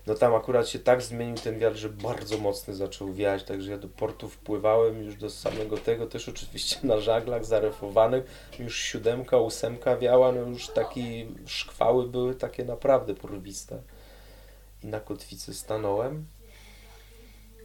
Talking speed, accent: 145 wpm, native